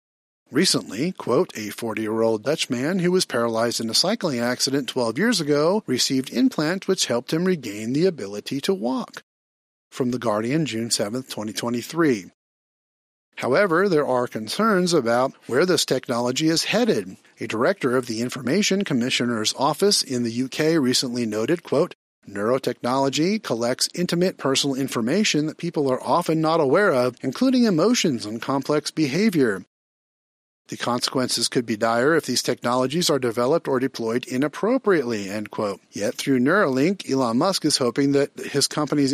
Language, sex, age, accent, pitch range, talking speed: English, male, 40-59, American, 120-165 Hz, 145 wpm